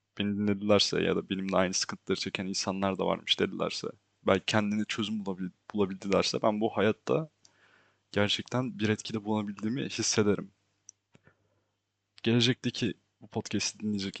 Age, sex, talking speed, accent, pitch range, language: 20-39, male, 115 wpm, native, 100-115 Hz, Turkish